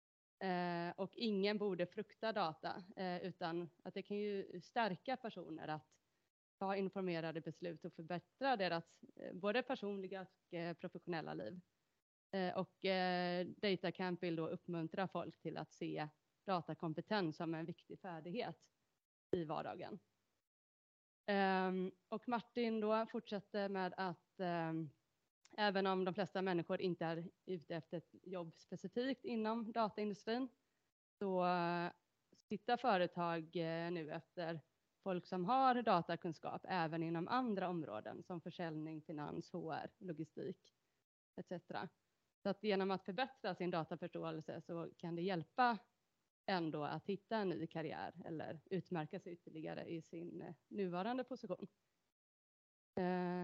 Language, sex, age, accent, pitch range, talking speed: Swedish, female, 30-49, native, 170-200 Hz, 125 wpm